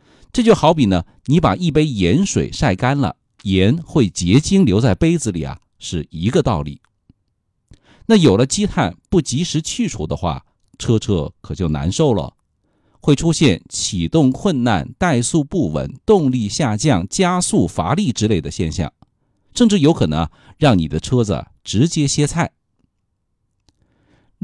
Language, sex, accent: Chinese, male, native